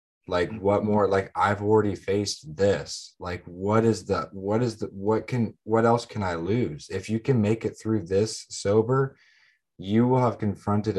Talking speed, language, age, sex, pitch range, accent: 185 wpm, English, 20-39, male, 85-105 Hz, American